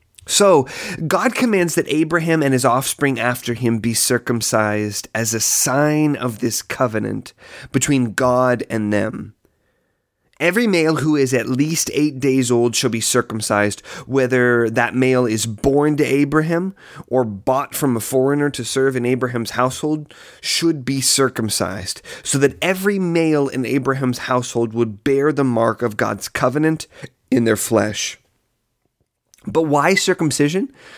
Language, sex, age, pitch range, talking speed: English, male, 30-49, 115-155 Hz, 145 wpm